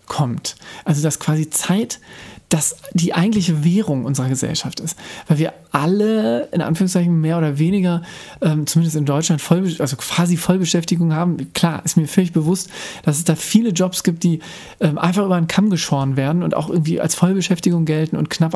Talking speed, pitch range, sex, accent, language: 180 wpm, 155-185 Hz, male, German, German